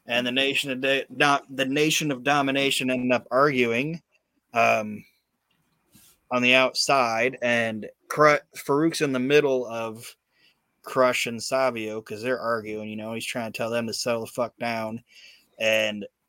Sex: male